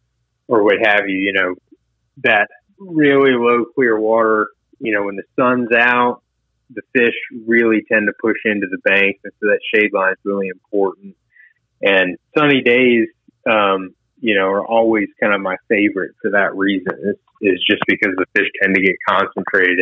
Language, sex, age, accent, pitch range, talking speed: English, male, 30-49, American, 95-120 Hz, 175 wpm